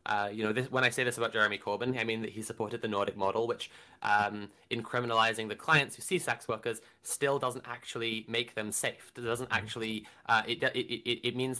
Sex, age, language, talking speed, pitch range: male, 20-39, English, 220 wpm, 105-125 Hz